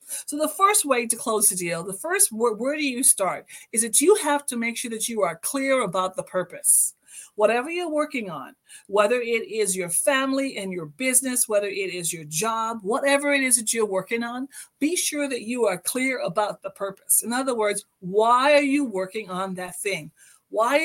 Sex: female